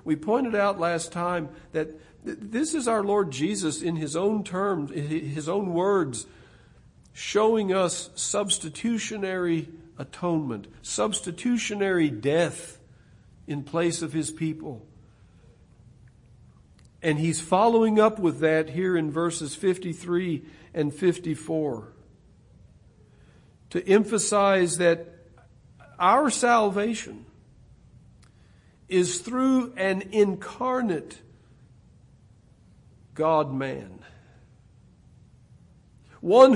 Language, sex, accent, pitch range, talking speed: English, male, American, 130-190 Hz, 85 wpm